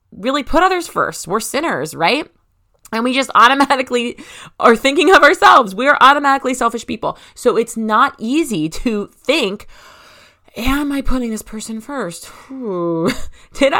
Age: 30-49